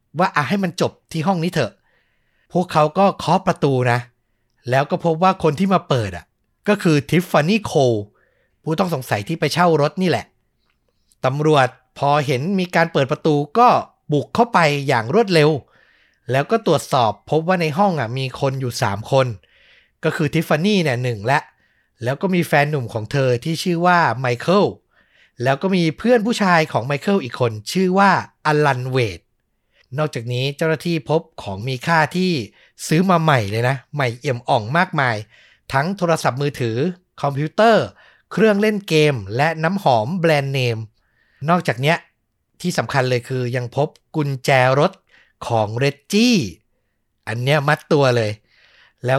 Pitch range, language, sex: 130-170 Hz, Thai, male